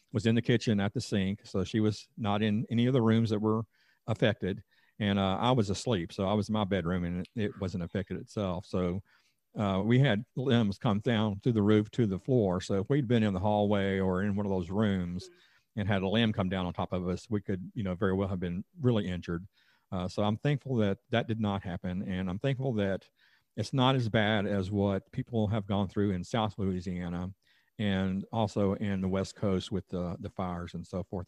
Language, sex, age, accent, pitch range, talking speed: English, male, 50-69, American, 95-110 Hz, 230 wpm